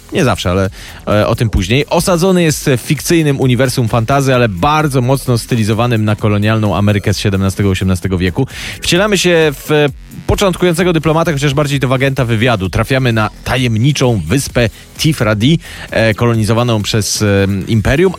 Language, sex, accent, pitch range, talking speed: Polish, male, native, 100-140 Hz, 145 wpm